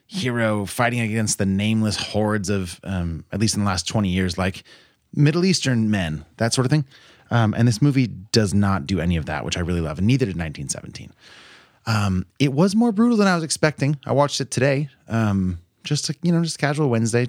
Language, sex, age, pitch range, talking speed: English, male, 30-49, 90-120 Hz, 210 wpm